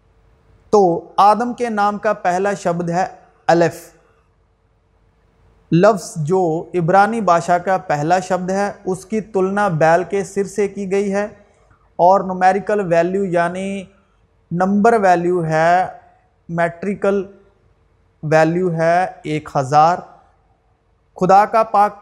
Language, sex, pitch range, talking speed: Urdu, male, 165-200 Hz, 115 wpm